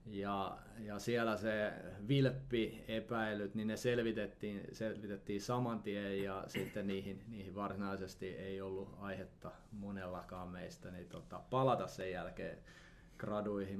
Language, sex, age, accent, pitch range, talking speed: Finnish, male, 30-49, native, 100-115 Hz, 120 wpm